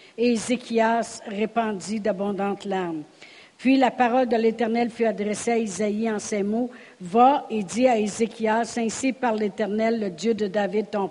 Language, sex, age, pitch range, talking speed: French, female, 60-79, 205-245 Hz, 160 wpm